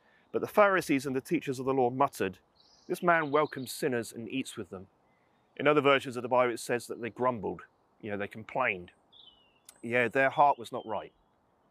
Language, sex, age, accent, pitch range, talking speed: English, male, 30-49, British, 110-135 Hz, 200 wpm